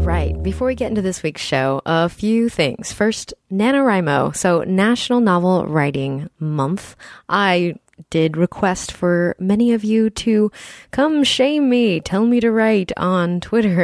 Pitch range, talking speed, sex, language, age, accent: 160-220 Hz, 150 wpm, female, English, 20-39, American